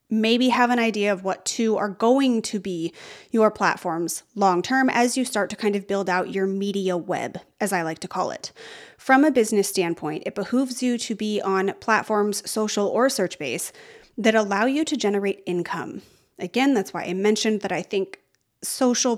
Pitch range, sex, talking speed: 190-235 Hz, female, 190 wpm